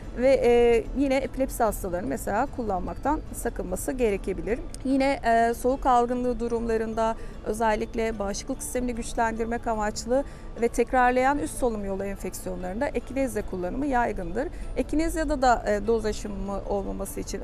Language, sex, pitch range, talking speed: Turkish, female, 205-260 Hz, 130 wpm